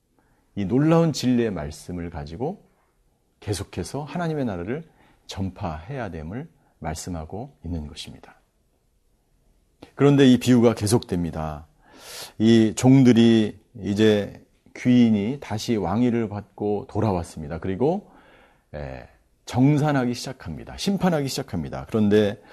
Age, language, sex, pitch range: 40-59, Korean, male, 95-140 Hz